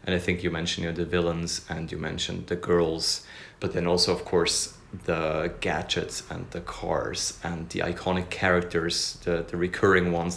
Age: 30-49